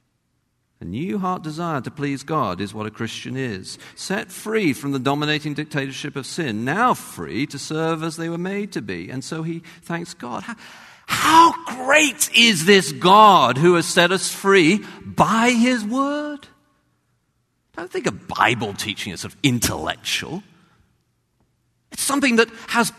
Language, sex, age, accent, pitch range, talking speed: English, male, 50-69, British, 115-185 Hz, 160 wpm